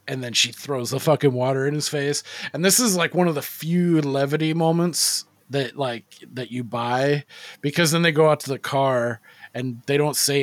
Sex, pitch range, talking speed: male, 120-145 Hz, 215 wpm